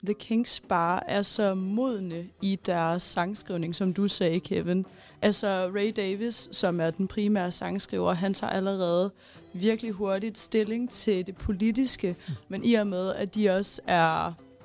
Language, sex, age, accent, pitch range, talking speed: Danish, female, 30-49, native, 180-210 Hz, 155 wpm